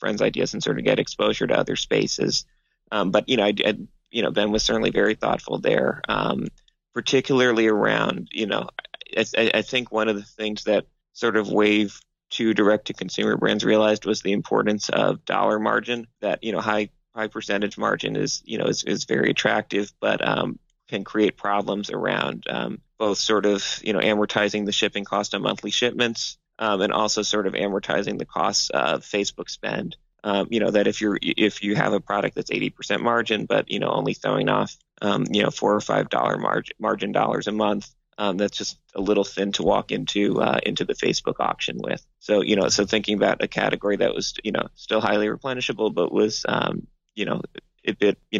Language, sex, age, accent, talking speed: English, male, 30-49, American, 205 wpm